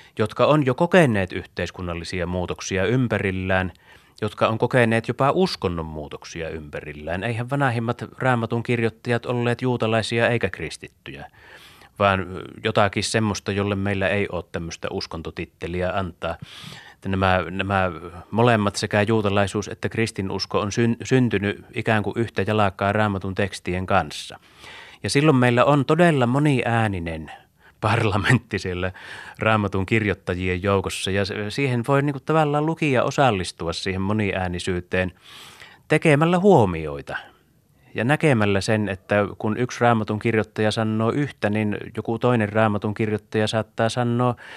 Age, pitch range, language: 30-49, 95-120 Hz, Finnish